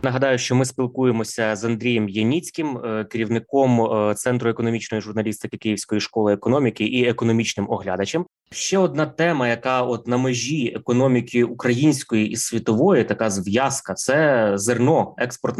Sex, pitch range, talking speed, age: male, 115-130 Hz, 125 wpm, 20-39